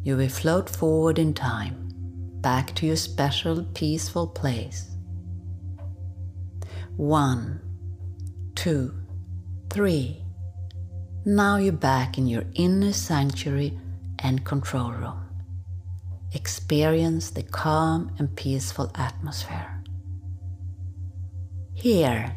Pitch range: 90-140 Hz